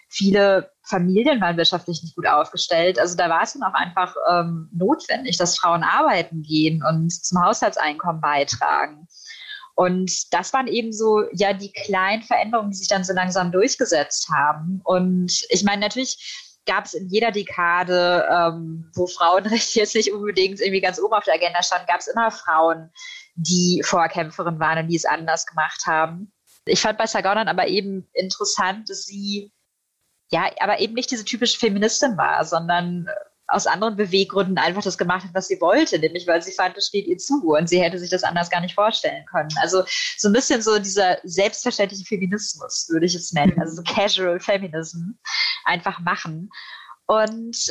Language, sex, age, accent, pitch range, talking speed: German, female, 20-39, German, 175-215 Hz, 175 wpm